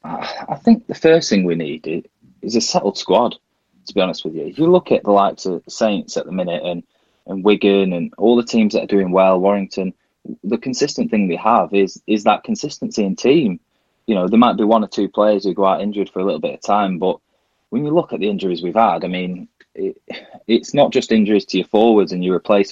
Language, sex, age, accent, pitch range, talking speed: English, male, 20-39, British, 90-110 Hz, 240 wpm